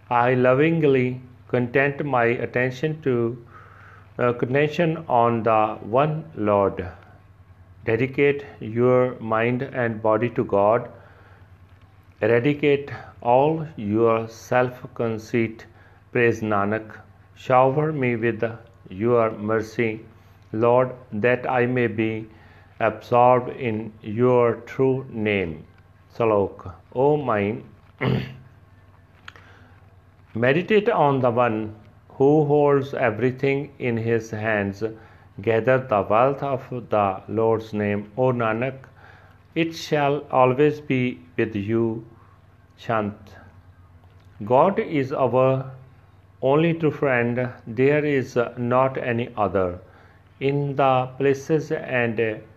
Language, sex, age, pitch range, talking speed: Punjabi, male, 40-59, 105-130 Hz, 95 wpm